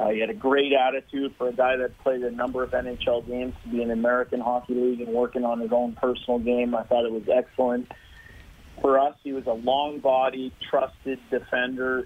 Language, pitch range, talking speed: English, 120-135 Hz, 215 wpm